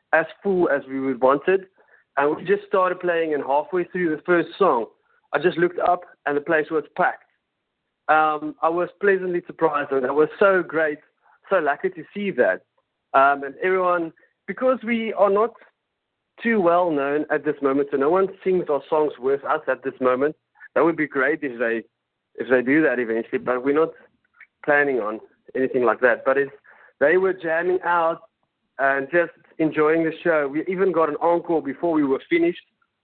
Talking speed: 185 wpm